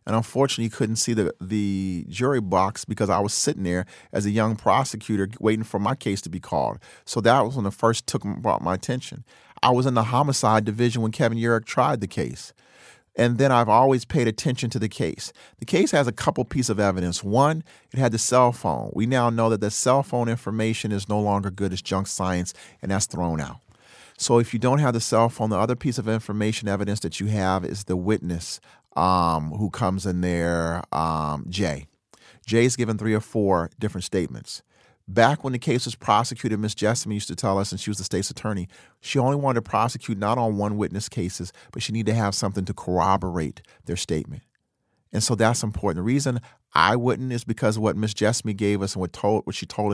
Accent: American